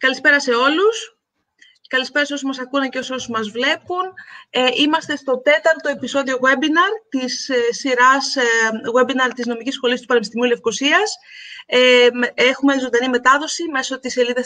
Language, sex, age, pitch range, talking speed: Greek, female, 30-49, 235-275 Hz, 160 wpm